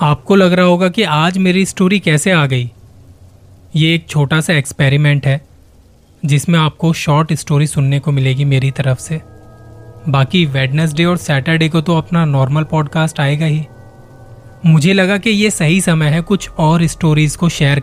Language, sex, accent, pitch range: Hindi, male, native, 125-160 Hz